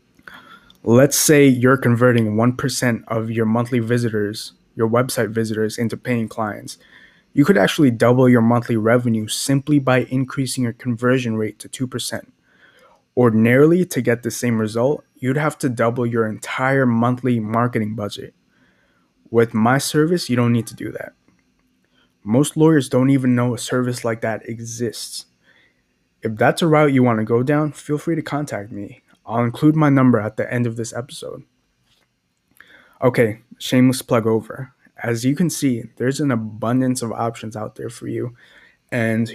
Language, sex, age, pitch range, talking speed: English, male, 20-39, 115-130 Hz, 160 wpm